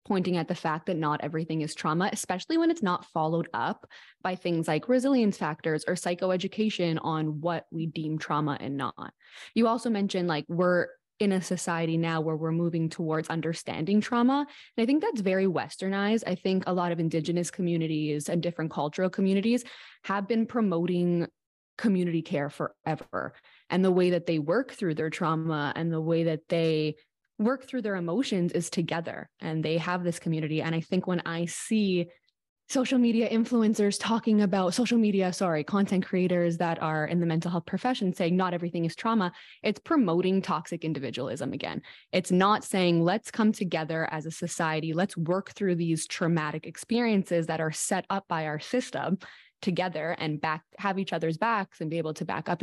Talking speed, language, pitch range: 180 wpm, English, 160-195 Hz